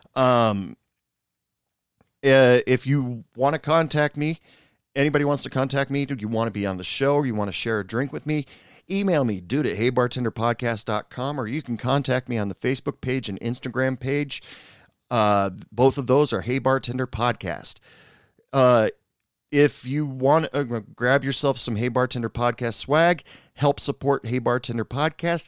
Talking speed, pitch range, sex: 165 wpm, 110-140 Hz, male